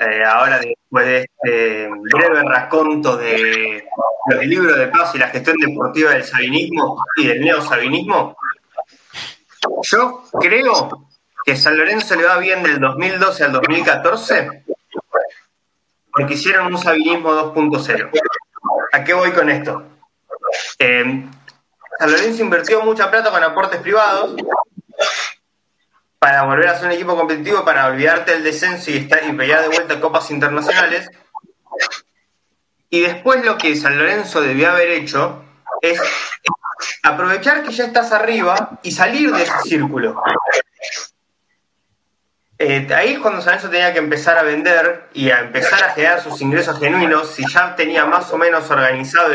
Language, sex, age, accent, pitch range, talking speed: Spanish, male, 20-39, Argentinian, 150-190 Hz, 145 wpm